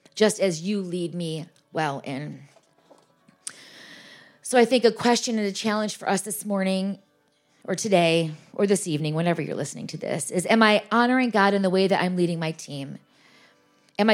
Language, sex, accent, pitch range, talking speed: English, female, American, 165-210 Hz, 185 wpm